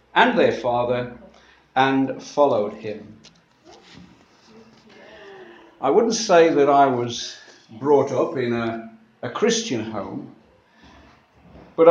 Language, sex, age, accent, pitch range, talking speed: English, male, 50-69, British, 125-160 Hz, 100 wpm